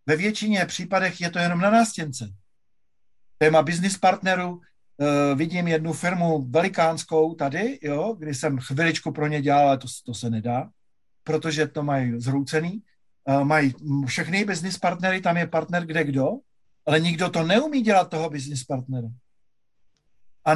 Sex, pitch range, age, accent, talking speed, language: male, 140-180 Hz, 50-69, native, 145 wpm, Czech